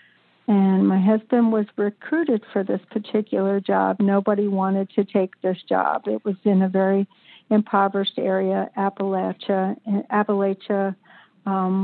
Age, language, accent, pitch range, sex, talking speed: 60-79, English, American, 195-215 Hz, female, 125 wpm